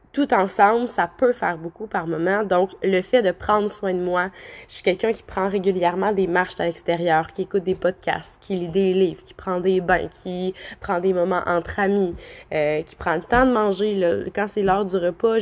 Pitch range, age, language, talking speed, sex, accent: 180-215 Hz, 20-39, French, 220 wpm, female, Canadian